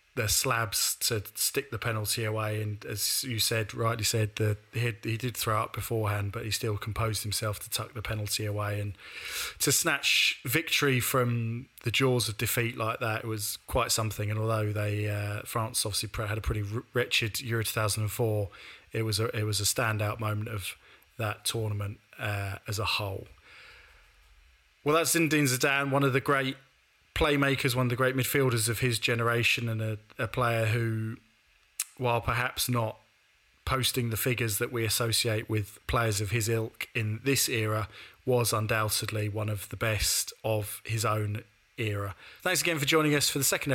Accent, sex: British, male